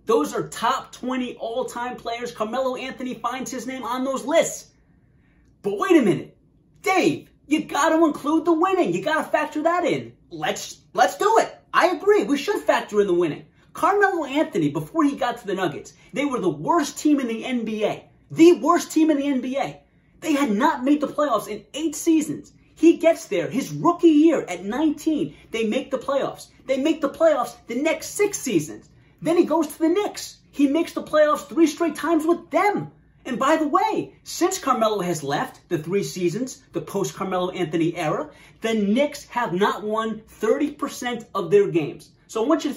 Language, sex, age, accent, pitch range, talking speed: English, male, 30-49, American, 205-320 Hz, 195 wpm